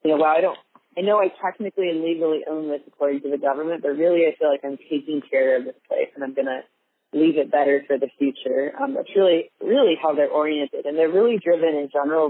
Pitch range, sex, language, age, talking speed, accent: 150-180 Hz, female, English, 30-49, 245 wpm, American